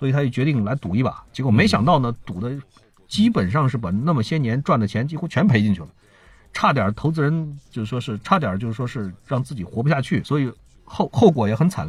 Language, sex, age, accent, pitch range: Chinese, male, 50-69, native, 105-160 Hz